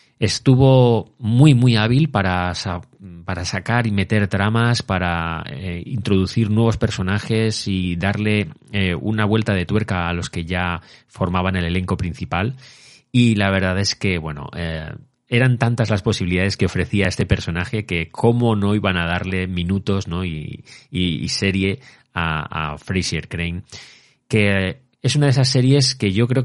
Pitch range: 90-115 Hz